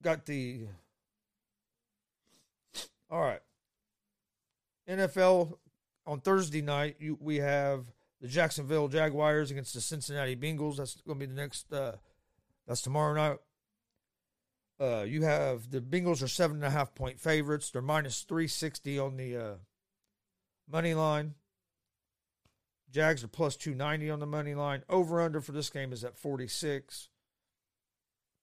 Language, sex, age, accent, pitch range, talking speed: English, male, 40-59, American, 130-155 Hz, 120 wpm